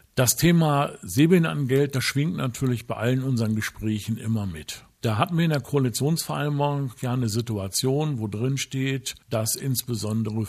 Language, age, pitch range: English, 50-69, 110-135 Hz